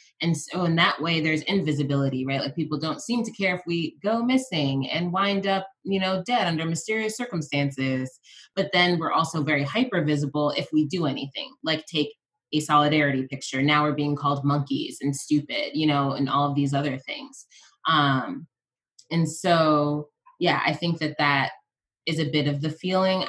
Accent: American